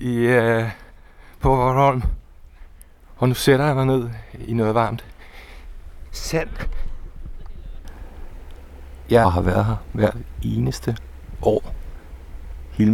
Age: 60-79